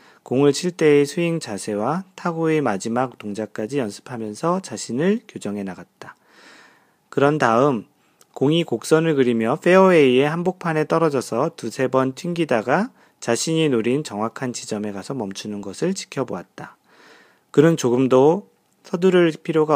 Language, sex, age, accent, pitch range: Korean, male, 40-59, native, 115-165 Hz